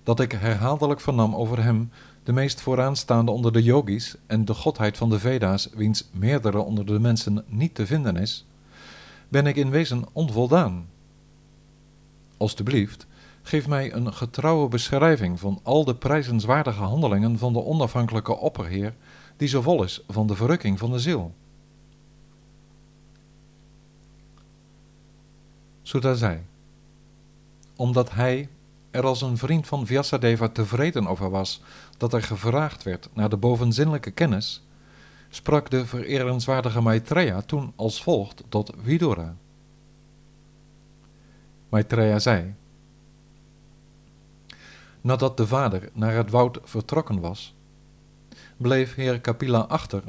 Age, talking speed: 50-69, 120 wpm